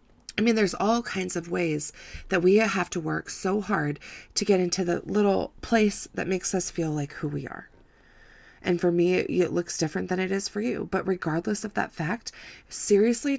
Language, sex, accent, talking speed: English, female, American, 205 wpm